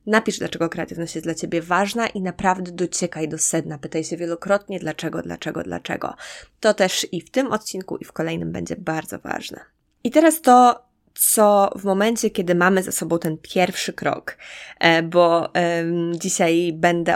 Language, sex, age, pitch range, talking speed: Polish, female, 20-39, 160-195 Hz, 165 wpm